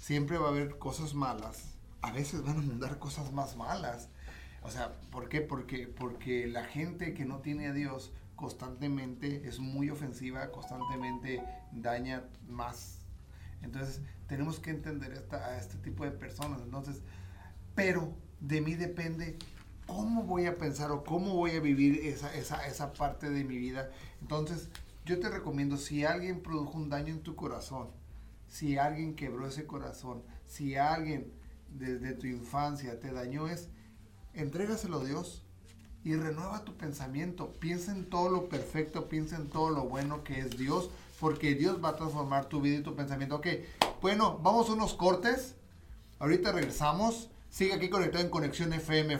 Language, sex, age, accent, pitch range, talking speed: Spanish, male, 40-59, Mexican, 130-165 Hz, 165 wpm